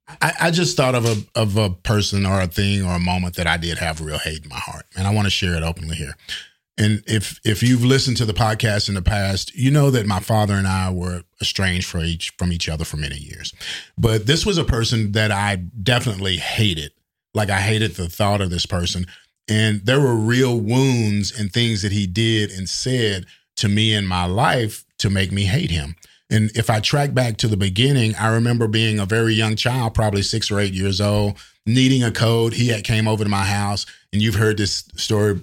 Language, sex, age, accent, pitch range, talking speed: English, male, 40-59, American, 95-115 Hz, 225 wpm